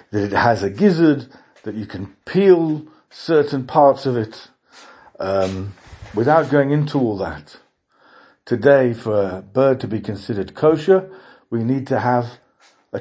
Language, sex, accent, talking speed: English, male, British, 150 wpm